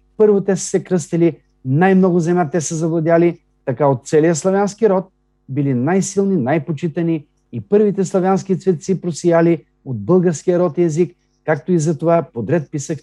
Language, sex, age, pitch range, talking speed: Bulgarian, male, 50-69, 125-170 Hz, 155 wpm